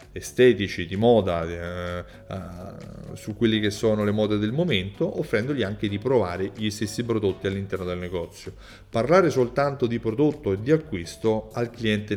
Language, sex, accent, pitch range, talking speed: Italian, male, native, 95-125 Hz, 160 wpm